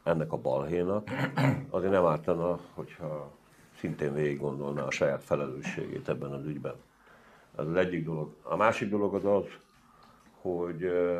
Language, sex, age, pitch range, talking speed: Hungarian, male, 60-79, 80-110 Hz, 135 wpm